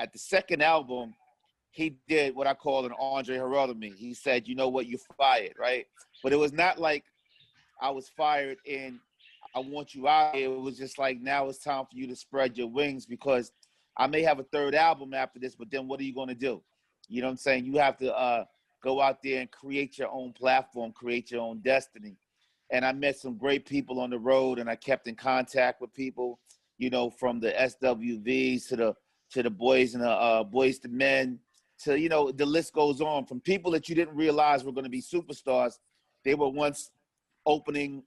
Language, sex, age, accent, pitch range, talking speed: English, male, 30-49, American, 125-145 Hz, 215 wpm